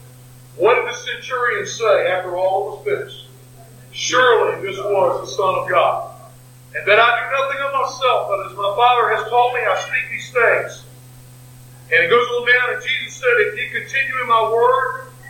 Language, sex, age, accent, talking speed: English, male, 50-69, American, 190 wpm